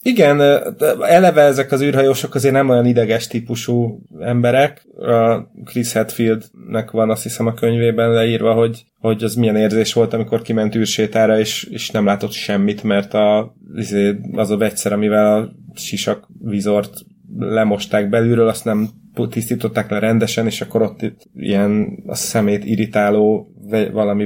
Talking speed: 150 wpm